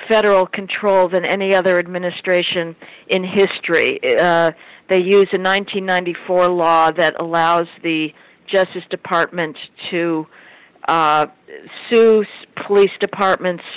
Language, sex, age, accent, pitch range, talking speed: English, female, 50-69, American, 175-205 Hz, 105 wpm